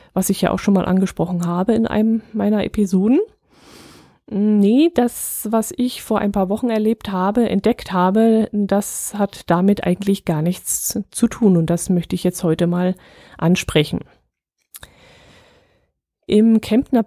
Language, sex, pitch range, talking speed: German, female, 180-225 Hz, 150 wpm